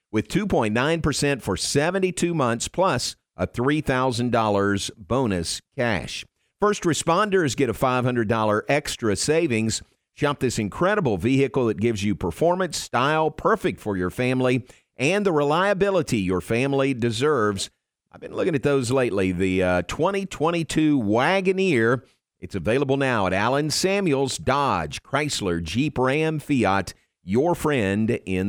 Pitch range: 110-145 Hz